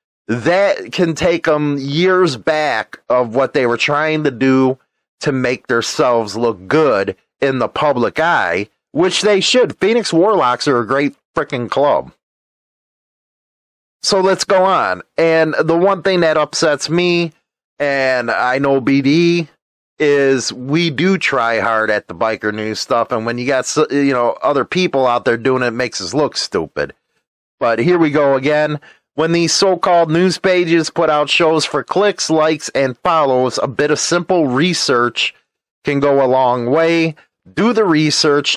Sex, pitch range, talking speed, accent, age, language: male, 125-165 Hz, 165 wpm, American, 30-49, English